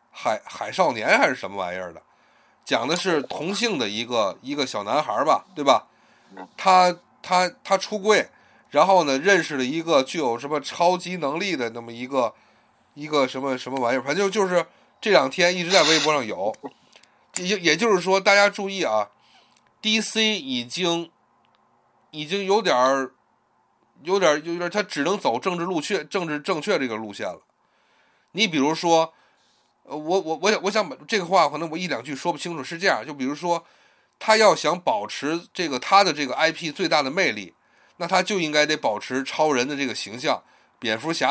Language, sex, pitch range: Chinese, male, 150-195 Hz